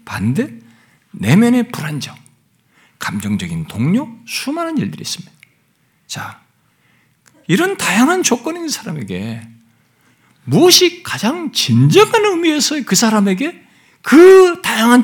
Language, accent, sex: Korean, native, male